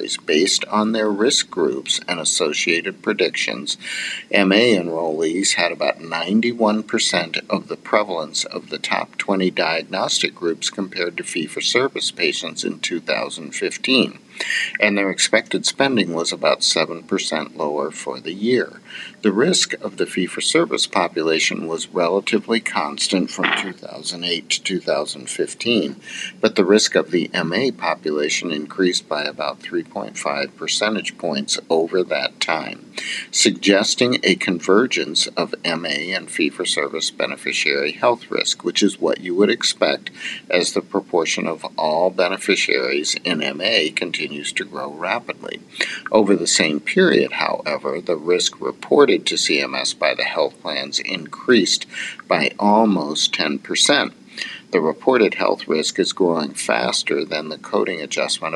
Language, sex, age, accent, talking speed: English, male, 50-69, American, 130 wpm